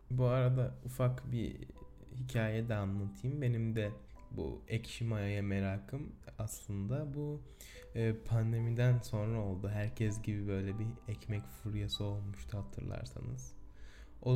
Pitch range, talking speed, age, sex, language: 100-125 Hz, 115 wpm, 10-29, male, Turkish